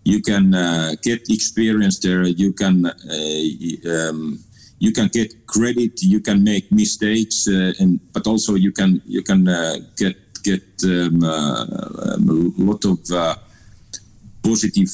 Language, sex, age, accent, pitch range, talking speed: Dutch, male, 50-69, Finnish, 85-110 Hz, 150 wpm